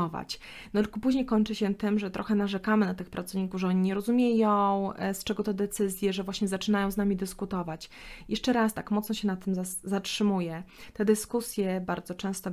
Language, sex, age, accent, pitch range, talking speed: Polish, female, 20-39, native, 185-210 Hz, 180 wpm